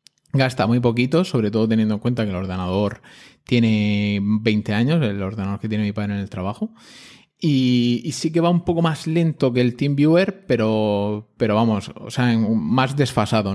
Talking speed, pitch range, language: 190 wpm, 110-135 Hz, Spanish